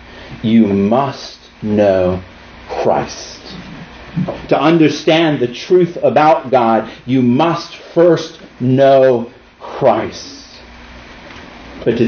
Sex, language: male, English